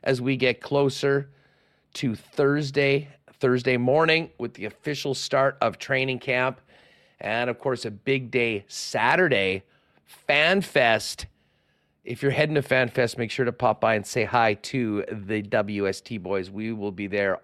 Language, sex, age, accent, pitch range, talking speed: English, male, 40-59, American, 110-140 Hz, 150 wpm